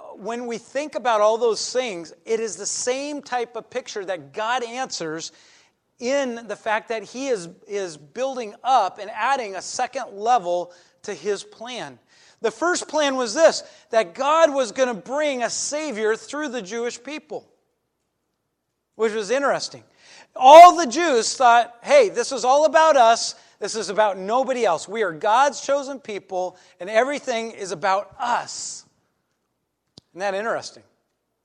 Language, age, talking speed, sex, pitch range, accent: English, 40-59, 155 wpm, male, 195-265 Hz, American